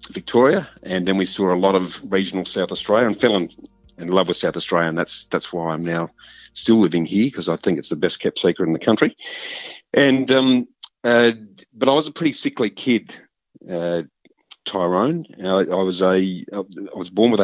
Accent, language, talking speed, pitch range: Australian, English, 205 wpm, 95-110 Hz